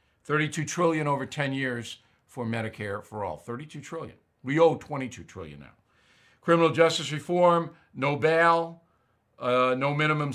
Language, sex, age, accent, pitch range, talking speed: English, male, 50-69, American, 125-170 Hz, 140 wpm